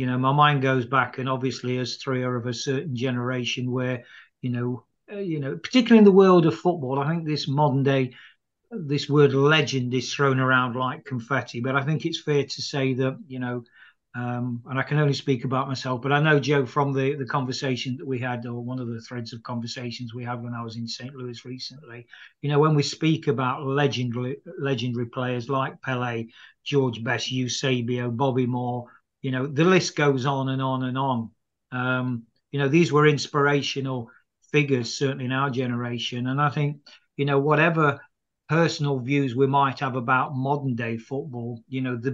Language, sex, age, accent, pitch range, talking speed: English, male, 40-59, British, 125-145 Hz, 200 wpm